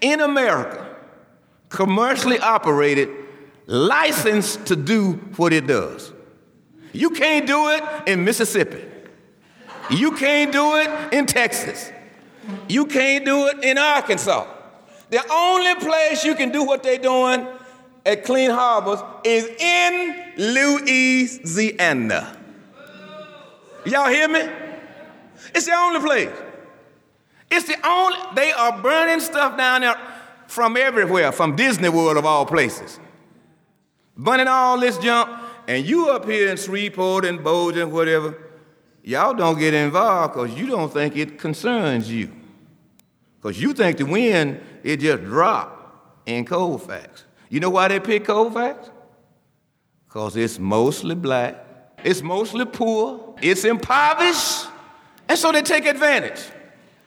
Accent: American